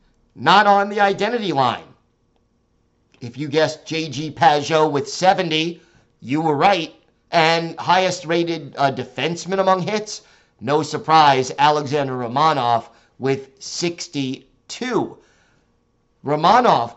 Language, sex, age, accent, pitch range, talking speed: English, male, 50-69, American, 145-175 Hz, 105 wpm